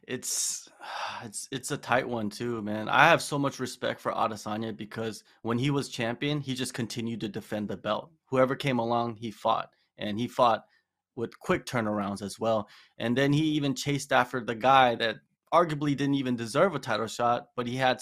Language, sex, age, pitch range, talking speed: English, male, 20-39, 115-140 Hz, 195 wpm